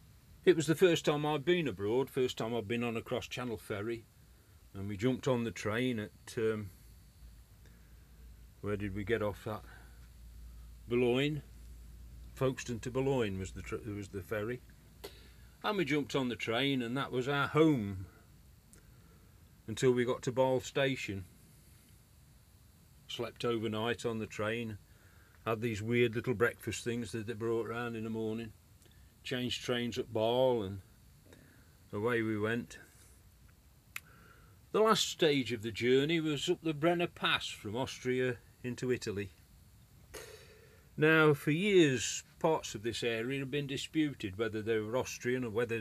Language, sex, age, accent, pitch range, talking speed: English, male, 40-59, British, 105-130 Hz, 145 wpm